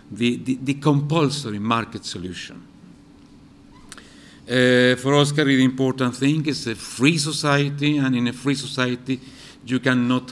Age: 50-69